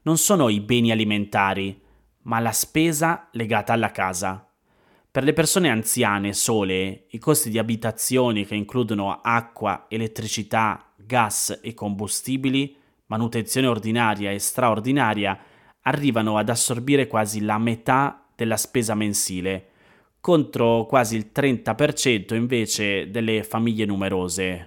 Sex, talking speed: male, 115 wpm